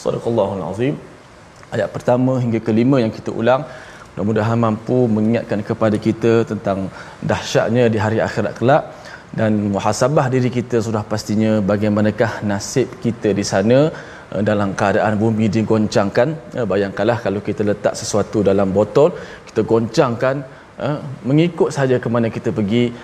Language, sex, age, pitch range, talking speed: Malayalam, male, 20-39, 105-125 Hz, 130 wpm